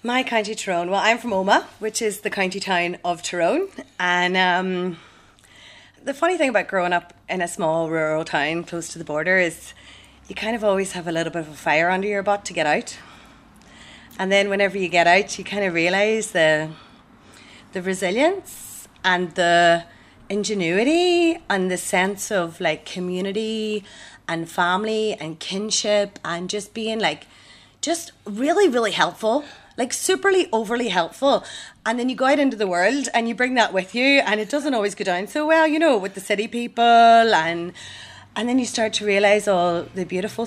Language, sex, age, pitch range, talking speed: English, female, 30-49, 175-230 Hz, 185 wpm